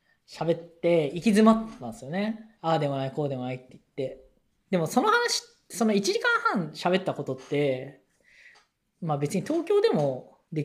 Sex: female